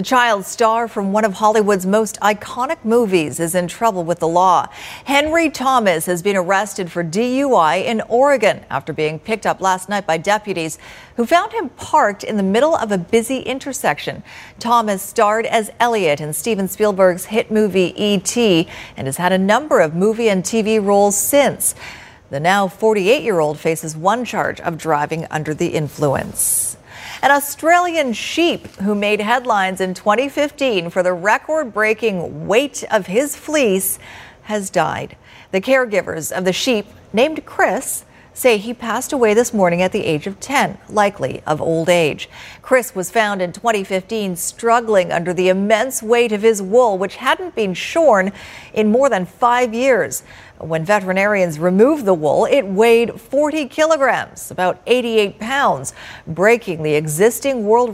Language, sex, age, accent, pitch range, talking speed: English, female, 40-59, American, 180-240 Hz, 160 wpm